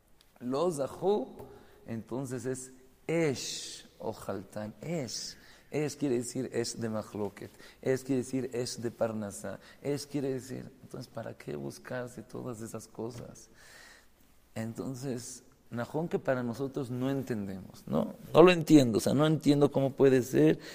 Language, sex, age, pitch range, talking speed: English, male, 40-59, 120-145 Hz, 140 wpm